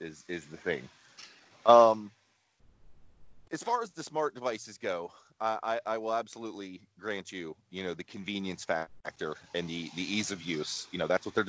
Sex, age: male, 30-49